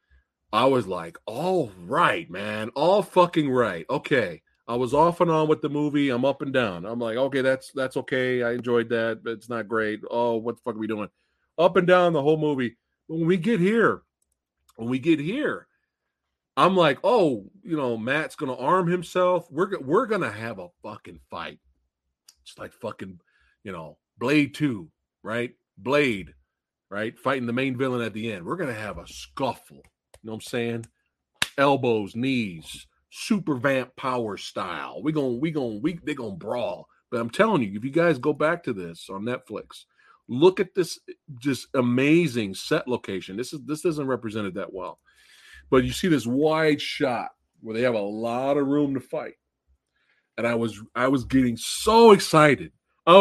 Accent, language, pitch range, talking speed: American, English, 115-165 Hz, 190 wpm